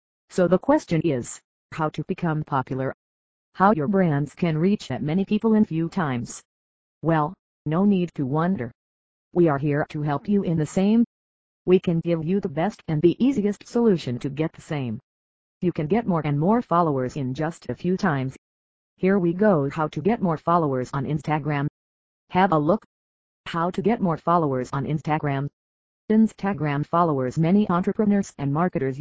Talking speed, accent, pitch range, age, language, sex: 175 wpm, American, 130-180 Hz, 40-59, English, female